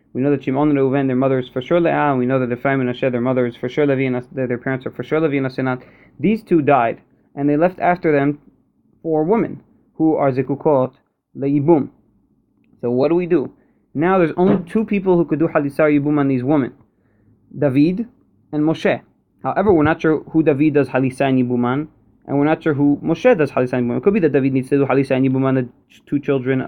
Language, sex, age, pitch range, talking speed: English, male, 20-39, 130-150 Hz, 215 wpm